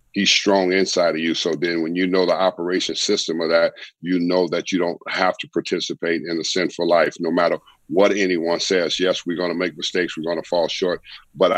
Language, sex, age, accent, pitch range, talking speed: English, male, 50-69, American, 85-95 Hz, 220 wpm